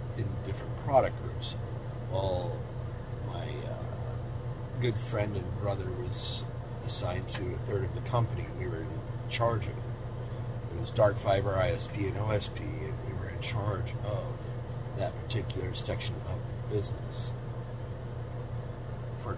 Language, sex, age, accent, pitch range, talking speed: English, male, 40-59, American, 110-120 Hz, 135 wpm